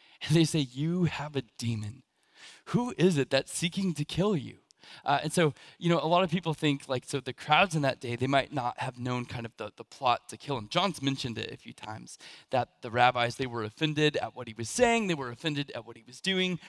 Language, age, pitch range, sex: English, 20-39, 120-160 Hz, male